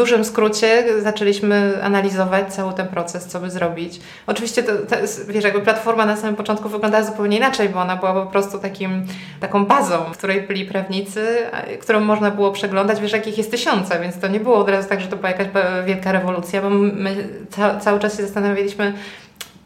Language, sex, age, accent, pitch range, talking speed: Polish, female, 20-39, native, 185-210 Hz, 195 wpm